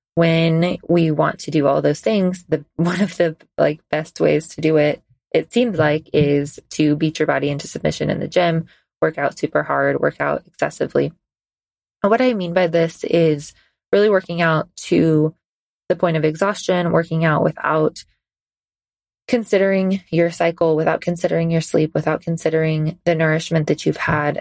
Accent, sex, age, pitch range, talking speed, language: American, female, 20-39, 150-170 Hz, 170 wpm, English